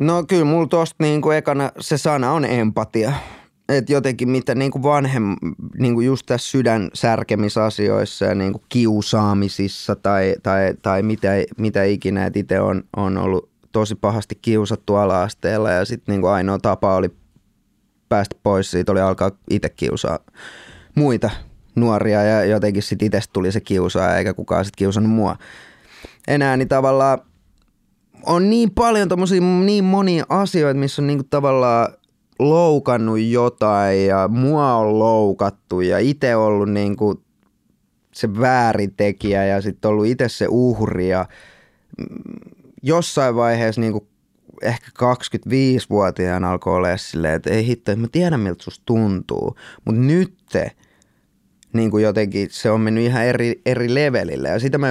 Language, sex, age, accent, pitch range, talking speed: Finnish, male, 20-39, native, 100-135 Hz, 140 wpm